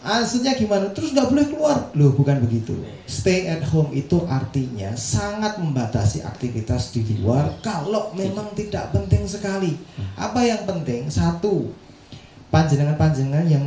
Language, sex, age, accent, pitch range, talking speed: Indonesian, male, 30-49, native, 120-170 Hz, 130 wpm